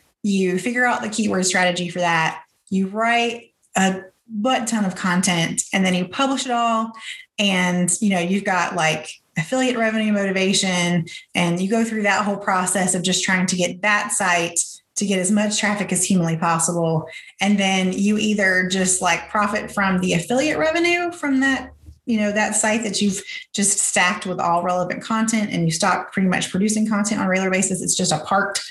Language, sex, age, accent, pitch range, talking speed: English, female, 20-39, American, 185-230 Hz, 190 wpm